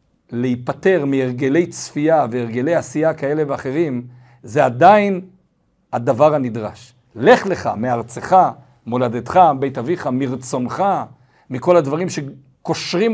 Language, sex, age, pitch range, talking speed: Hebrew, male, 50-69, 120-160 Hz, 95 wpm